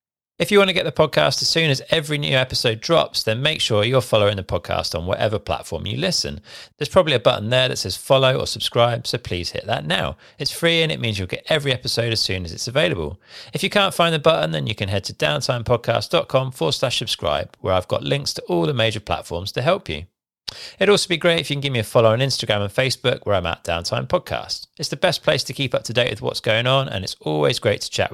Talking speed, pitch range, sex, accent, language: 260 wpm, 100-140 Hz, male, British, English